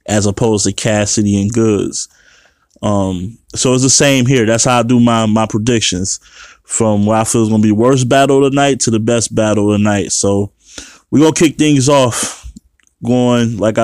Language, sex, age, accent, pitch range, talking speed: English, male, 20-39, American, 105-120 Hz, 205 wpm